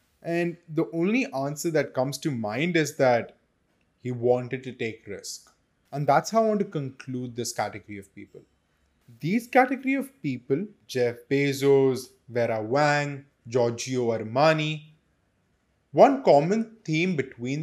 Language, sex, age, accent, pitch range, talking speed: English, male, 20-39, Indian, 110-155 Hz, 135 wpm